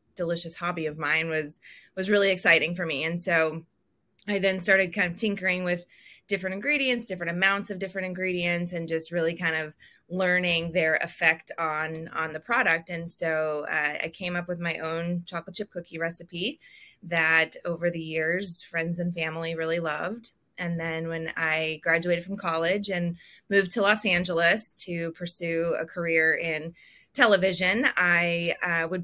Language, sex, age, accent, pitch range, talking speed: English, female, 20-39, American, 165-190 Hz, 165 wpm